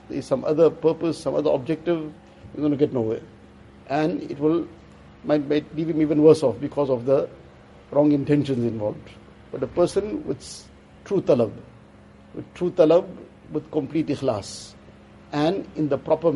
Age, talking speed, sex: 60-79, 160 wpm, male